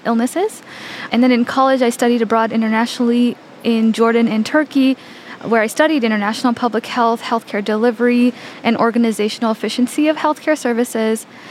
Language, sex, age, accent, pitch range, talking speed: English, female, 10-29, American, 220-240 Hz, 140 wpm